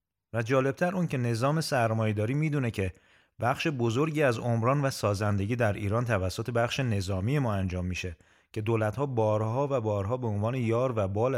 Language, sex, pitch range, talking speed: Persian, male, 100-130 Hz, 170 wpm